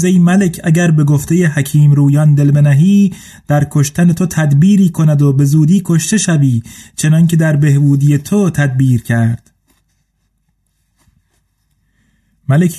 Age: 30-49